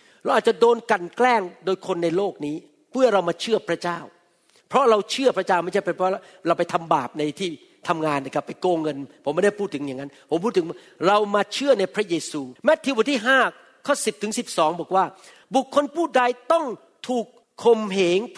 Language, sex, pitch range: Thai, male, 180-245 Hz